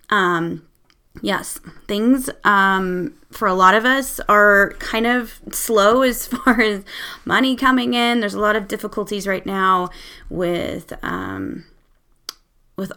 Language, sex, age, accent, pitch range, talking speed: English, female, 20-39, American, 180-230 Hz, 135 wpm